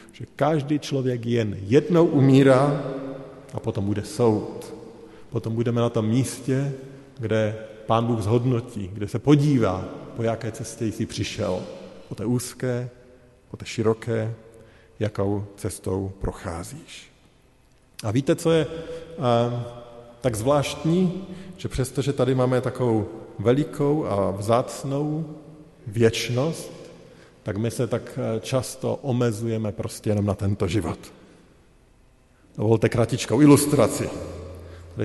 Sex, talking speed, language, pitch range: male, 115 wpm, Slovak, 105-130 Hz